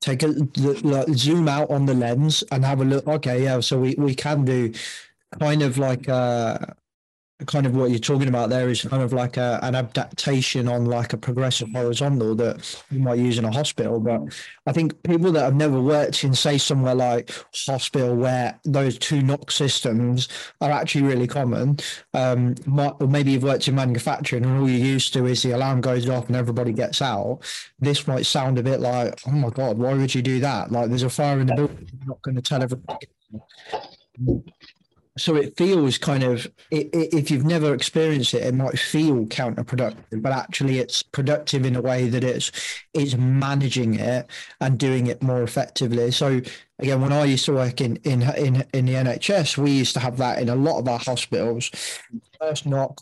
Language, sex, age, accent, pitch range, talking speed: English, male, 20-39, British, 125-145 Hz, 200 wpm